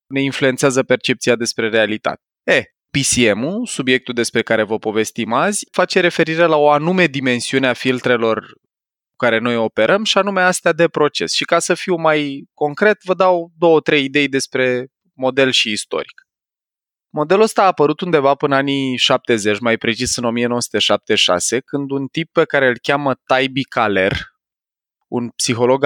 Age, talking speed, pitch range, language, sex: 20-39, 160 wpm, 125-165 Hz, Romanian, male